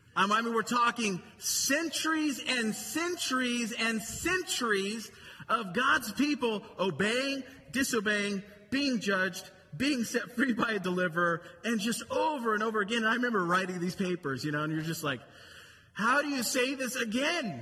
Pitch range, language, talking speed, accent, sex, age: 200-260 Hz, English, 155 wpm, American, male, 30-49